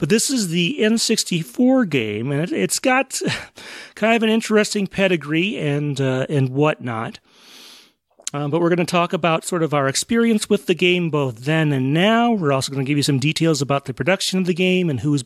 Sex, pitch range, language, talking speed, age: male, 150-205 Hz, English, 210 wpm, 40-59